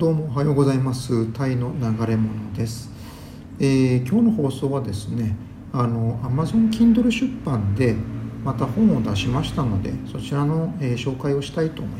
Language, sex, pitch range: Japanese, male, 110-145 Hz